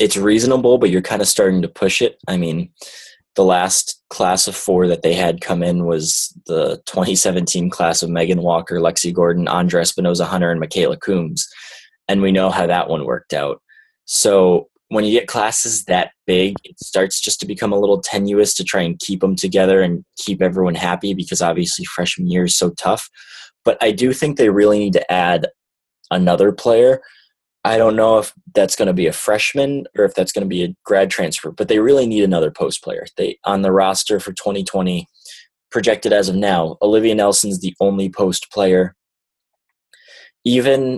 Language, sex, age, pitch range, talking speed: English, male, 20-39, 90-105 Hz, 190 wpm